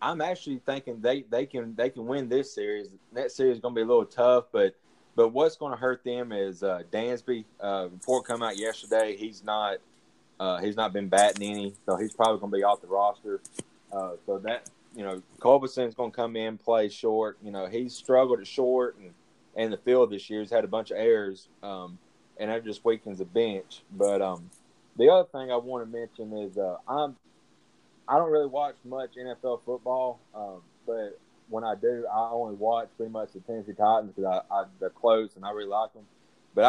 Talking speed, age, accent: 210 wpm, 20-39, American